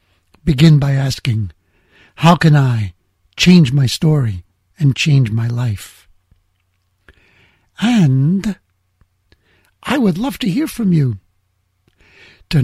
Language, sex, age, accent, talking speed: English, male, 60-79, American, 105 wpm